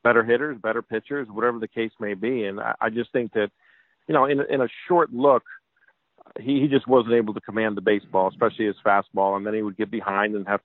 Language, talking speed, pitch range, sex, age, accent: English, 235 wpm, 105-115 Hz, male, 50-69, American